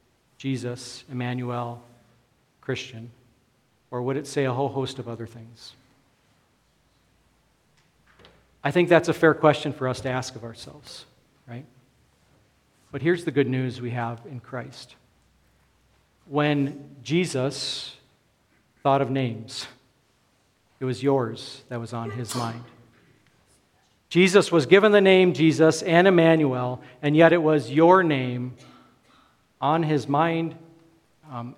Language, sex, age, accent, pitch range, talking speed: English, male, 50-69, American, 125-165 Hz, 125 wpm